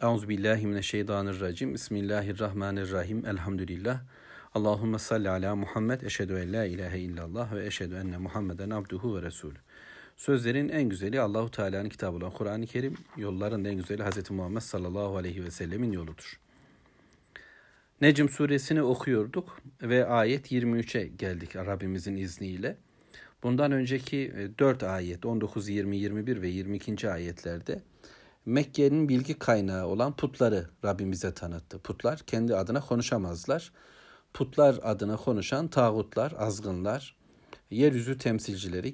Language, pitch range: Turkish, 95-125 Hz